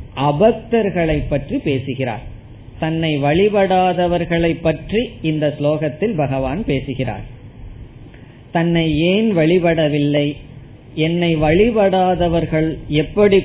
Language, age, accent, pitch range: Tamil, 20-39, native, 130-165 Hz